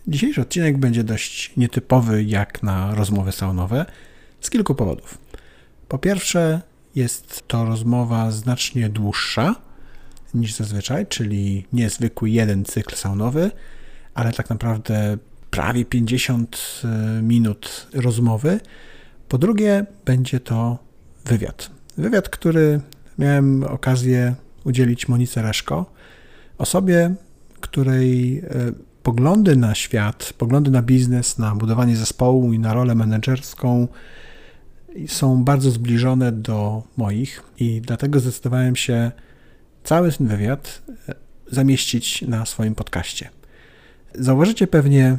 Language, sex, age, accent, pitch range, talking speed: Polish, male, 50-69, native, 110-130 Hz, 105 wpm